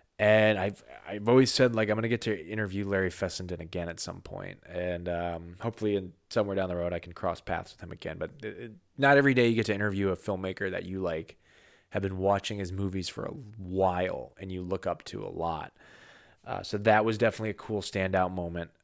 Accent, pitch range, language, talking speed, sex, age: American, 95-125 Hz, English, 225 wpm, male, 20-39